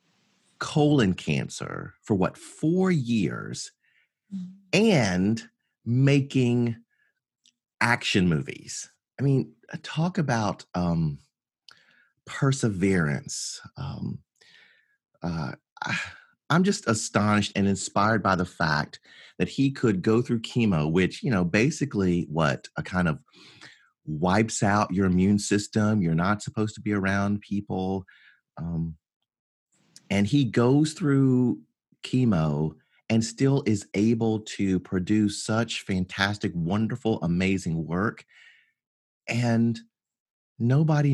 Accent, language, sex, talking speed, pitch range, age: American, English, male, 105 wpm, 95-130 Hz, 30-49